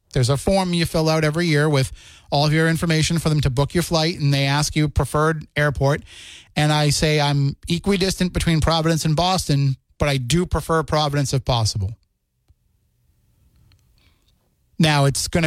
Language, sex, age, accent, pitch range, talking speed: English, male, 30-49, American, 120-155 Hz, 170 wpm